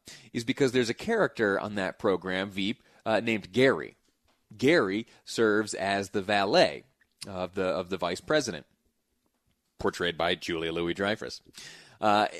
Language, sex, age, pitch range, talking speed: English, male, 30-49, 100-125 Hz, 140 wpm